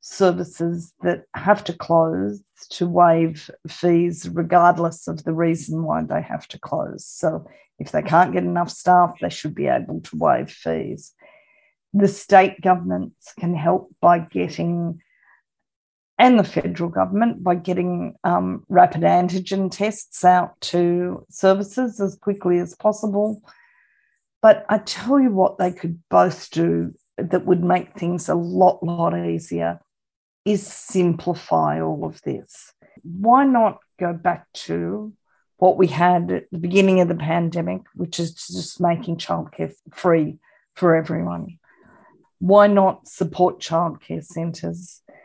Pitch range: 165-190 Hz